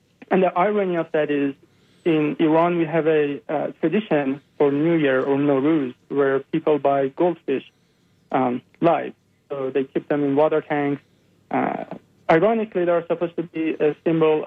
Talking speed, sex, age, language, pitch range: 160 wpm, male, 40-59, English, 140-170 Hz